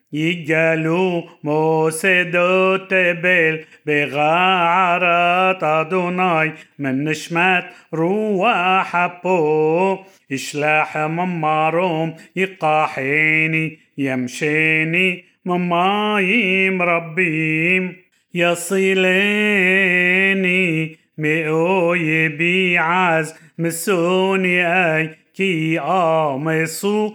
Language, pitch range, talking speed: Hebrew, 160-185 Hz, 45 wpm